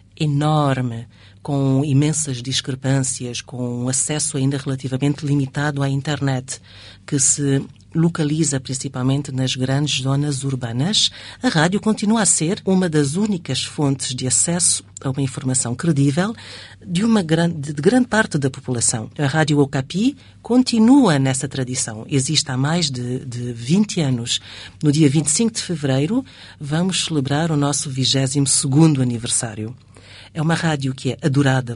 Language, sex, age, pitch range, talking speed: Portuguese, female, 50-69, 130-155 Hz, 140 wpm